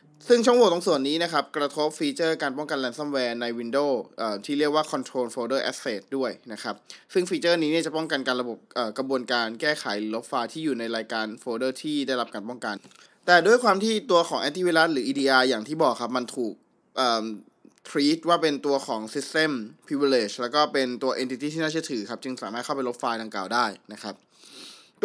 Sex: male